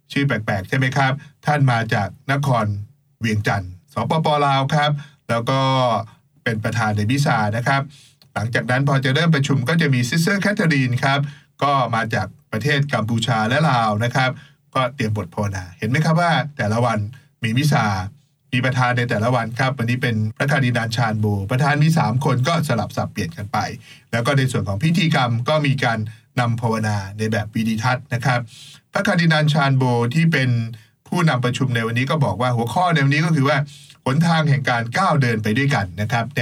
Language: English